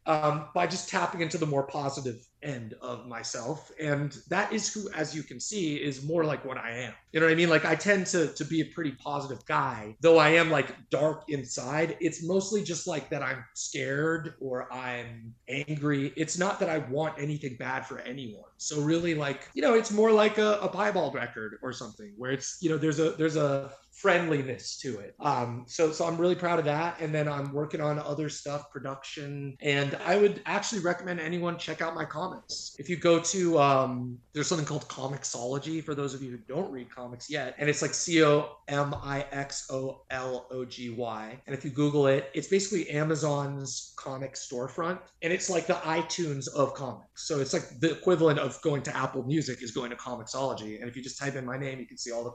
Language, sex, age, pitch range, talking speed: English, male, 30-49, 130-165 Hz, 210 wpm